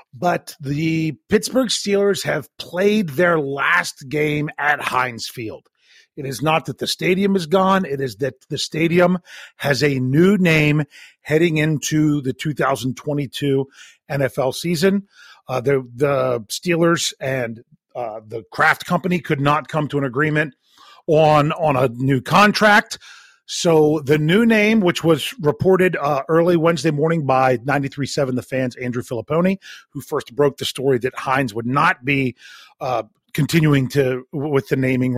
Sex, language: male, English